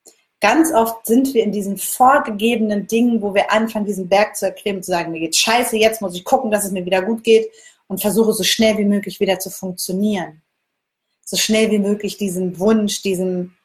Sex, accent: female, German